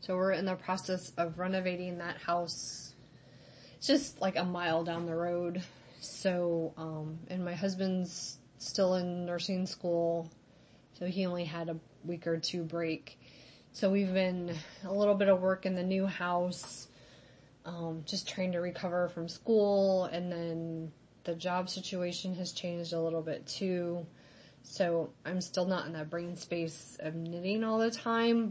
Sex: female